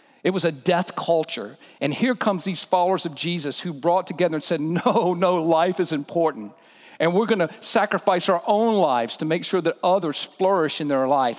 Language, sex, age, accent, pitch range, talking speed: English, male, 50-69, American, 145-190 Hz, 205 wpm